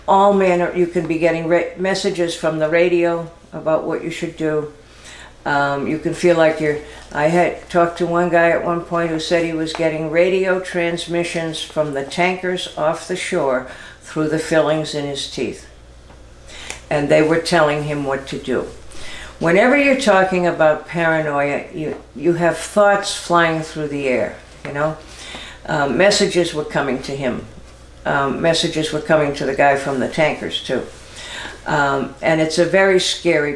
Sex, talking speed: female, 170 wpm